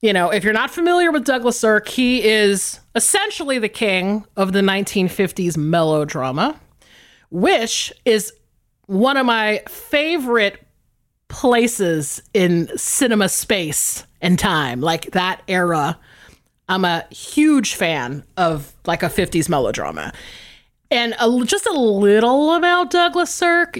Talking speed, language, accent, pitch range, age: 125 wpm, English, American, 175-250 Hz, 30-49